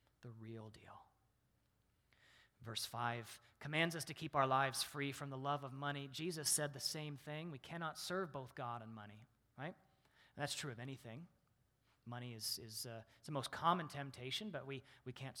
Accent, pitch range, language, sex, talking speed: American, 115-185 Hz, English, male, 180 wpm